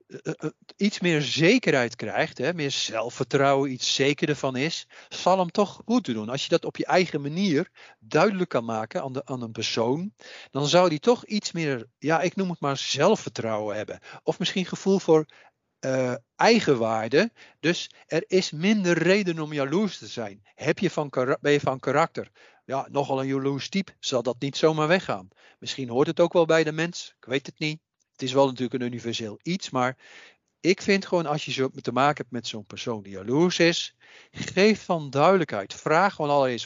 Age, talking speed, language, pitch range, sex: 50-69, 180 wpm, Dutch, 130-180 Hz, male